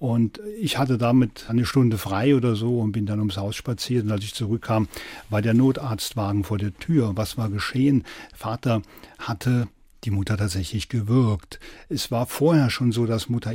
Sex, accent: male, German